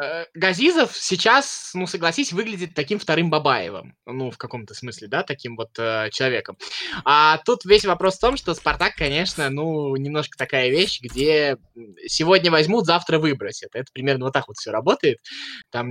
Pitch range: 130-175 Hz